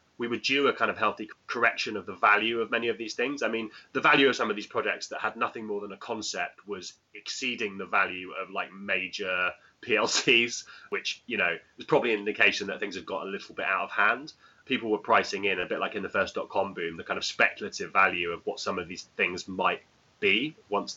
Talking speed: 240 wpm